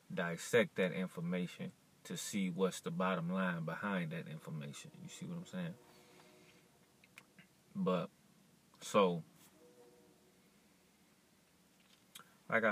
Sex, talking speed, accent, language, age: male, 95 wpm, American, English, 20-39